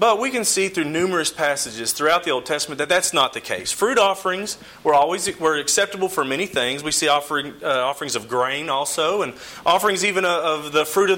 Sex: male